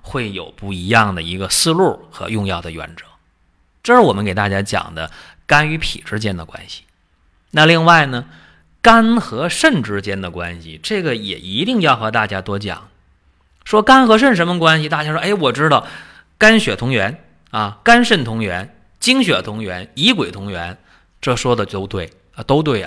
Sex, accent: male, native